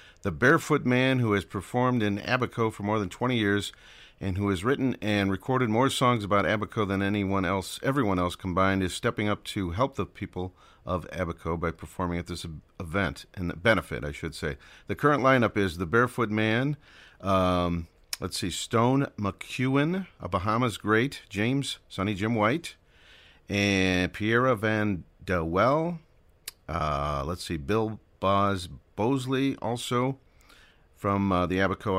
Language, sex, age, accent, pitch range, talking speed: English, male, 50-69, American, 90-115 Hz, 160 wpm